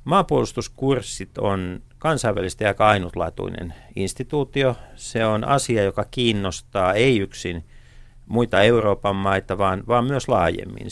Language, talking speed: Finnish, 110 wpm